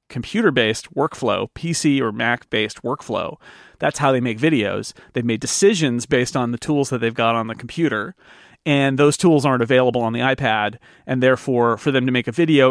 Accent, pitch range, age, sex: American, 120-150 Hz, 30-49, male